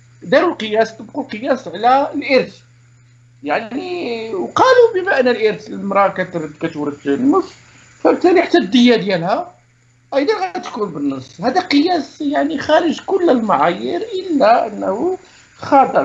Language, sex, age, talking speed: Arabic, male, 50-69, 110 wpm